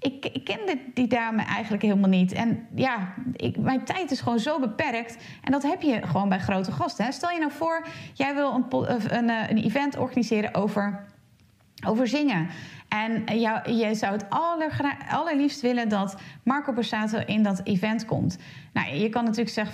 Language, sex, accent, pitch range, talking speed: Dutch, female, Dutch, 190-250 Hz, 175 wpm